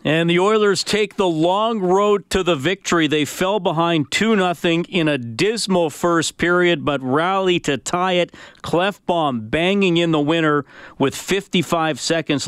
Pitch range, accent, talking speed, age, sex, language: 130-170 Hz, American, 155 wpm, 40-59, male, English